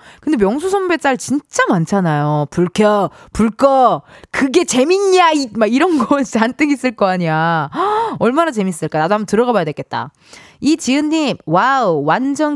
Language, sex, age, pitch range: Korean, female, 20-39, 175-280 Hz